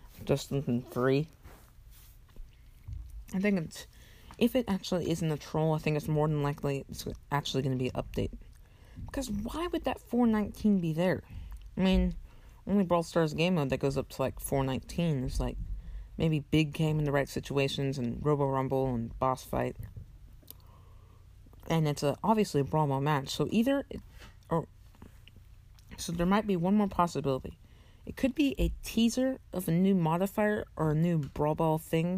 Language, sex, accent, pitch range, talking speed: English, female, American, 105-170 Hz, 175 wpm